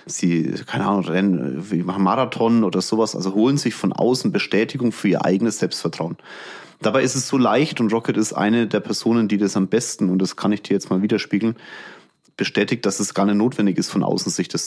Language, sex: German, male